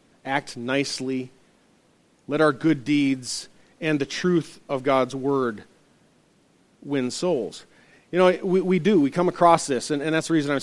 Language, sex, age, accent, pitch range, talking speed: English, male, 40-59, American, 145-180 Hz, 165 wpm